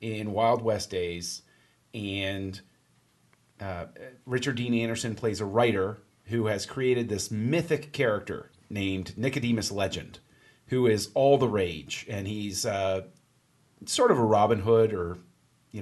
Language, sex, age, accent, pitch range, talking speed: English, male, 30-49, American, 100-120 Hz, 135 wpm